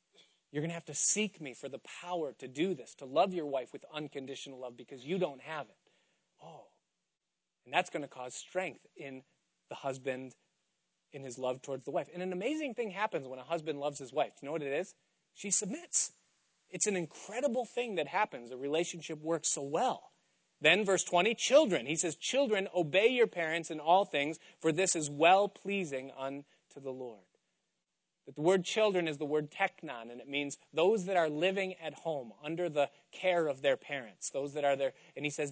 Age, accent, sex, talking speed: 30-49, American, male, 205 wpm